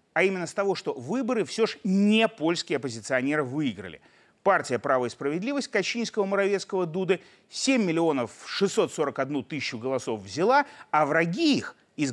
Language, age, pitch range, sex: Russian, 30-49, 140-225 Hz, male